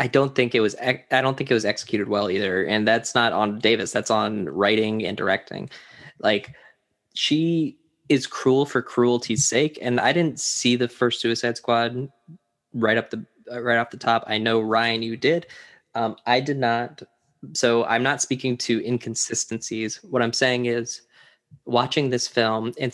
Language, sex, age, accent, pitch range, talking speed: English, male, 10-29, American, 115-135 Hz, 180 wpm